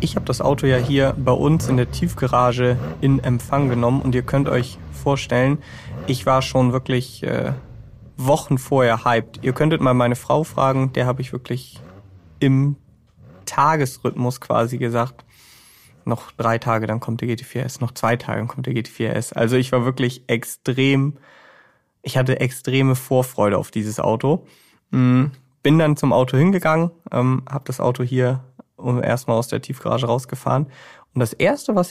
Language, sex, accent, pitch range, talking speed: German, male, German, 120-135 Hz, 165 wpm